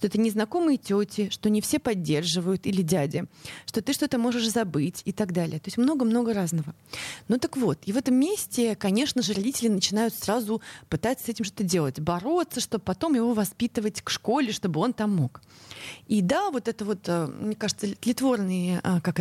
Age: 30-49